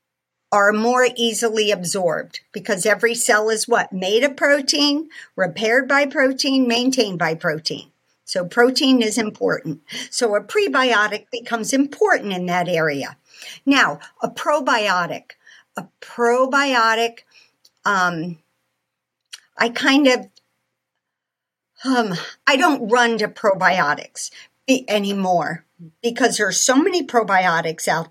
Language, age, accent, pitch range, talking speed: English, 50-69, American, 205-270 Hz, 110 wpm